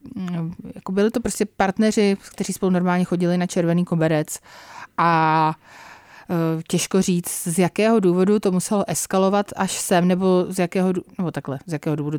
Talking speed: 160 wpm